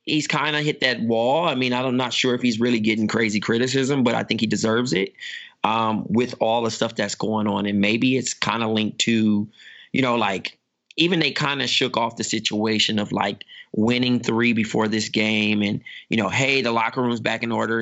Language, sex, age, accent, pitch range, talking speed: English, male, 20-39, American, 110-125 Hz, 220 wpm